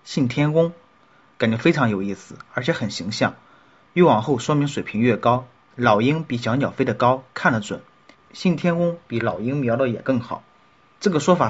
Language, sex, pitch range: Chinese, male, 115-150 Hz